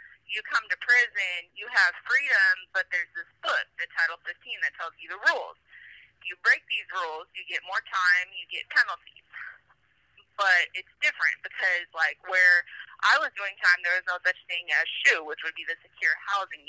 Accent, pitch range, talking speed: American, 170-205 Hz, 195 wpm